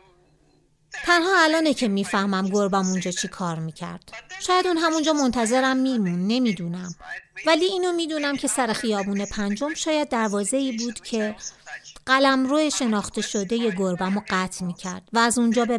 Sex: female